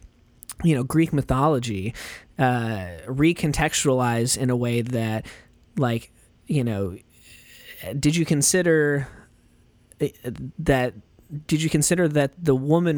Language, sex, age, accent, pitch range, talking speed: English, male, 20-39, American, 115-140 Hz, 105 wpm